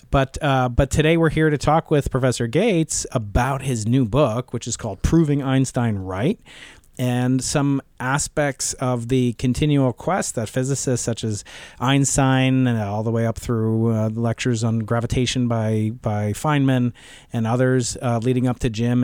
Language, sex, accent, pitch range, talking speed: English, male, American, 115-140 Hz, 165 wpm